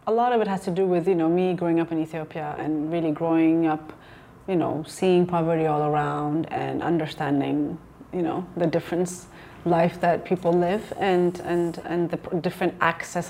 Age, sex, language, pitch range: 30-49, female, English, 165-195 Hz